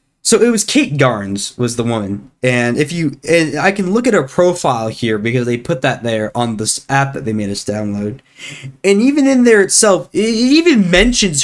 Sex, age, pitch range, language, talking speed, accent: male, 20-39, 130-200 Hz, English, 210 wpm, American